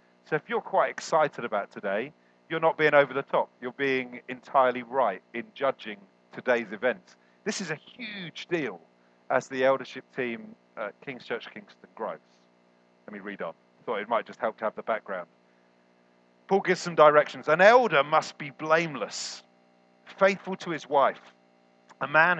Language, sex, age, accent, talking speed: English, male, 40-59, British, 170 wpm